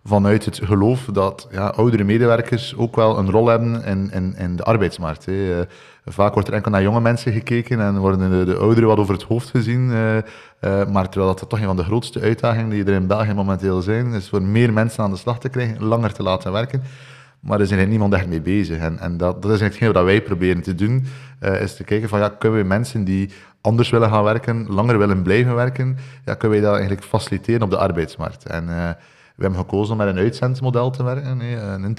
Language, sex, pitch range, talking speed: Dutch, male, 95-115 Hz, 235 wpm